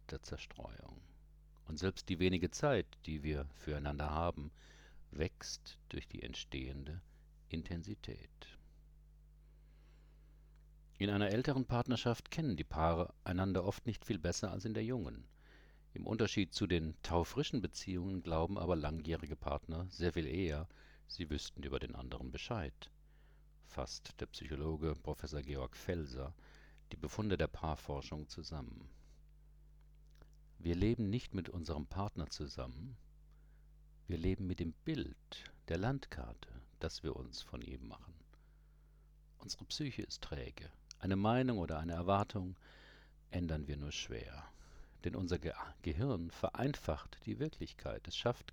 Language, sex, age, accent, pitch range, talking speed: German, male, 50-69, German, 75-115 Hz, 125 wpm